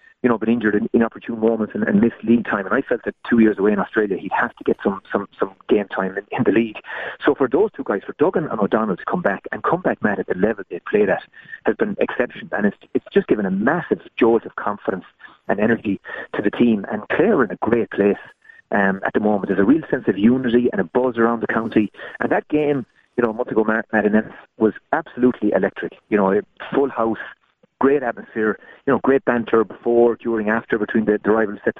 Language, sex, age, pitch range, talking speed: English, male, 30-49, 105-125 Hz, 240 wpm